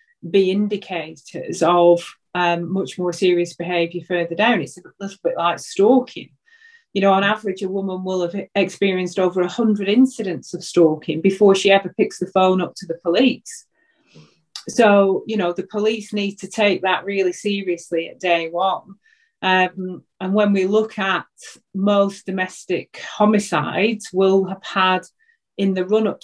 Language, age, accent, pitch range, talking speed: English, 30-49, British, 175-210 Hz, 160 wpm